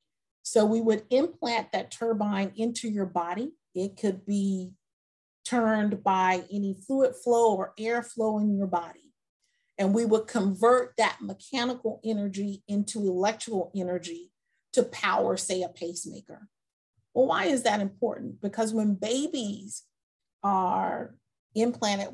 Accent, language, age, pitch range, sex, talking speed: American, English, 40-59, 185-235 Hz, female, 130 wpm